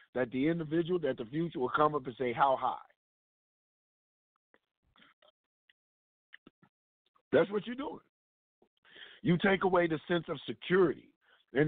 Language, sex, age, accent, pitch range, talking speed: English, male, 50-69, American, 140-175 Hz, 130 wpm